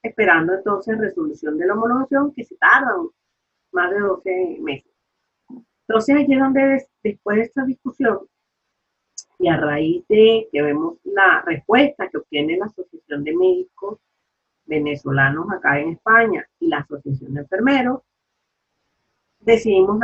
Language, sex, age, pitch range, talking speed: Spanish, female, 40-59, 175-250 Hz, 140 wpm